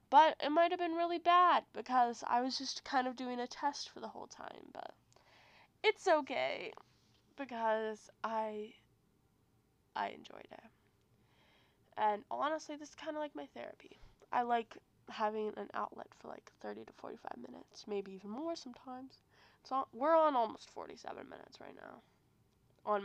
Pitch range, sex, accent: 205-255 Hz, female, American